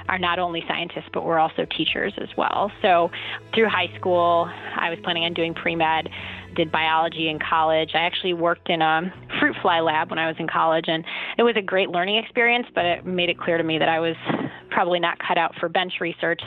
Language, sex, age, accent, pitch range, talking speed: English, female, 20-39, American, 160-175 Hz, 220 wpm